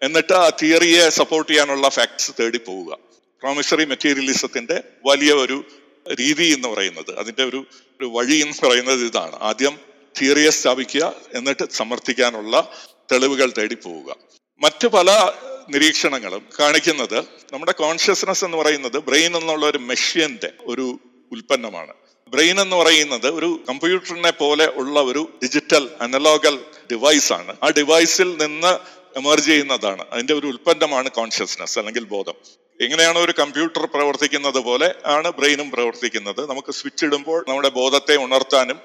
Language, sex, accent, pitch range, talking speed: Malayalam, male, native, 130-160 Hz, 120 wpm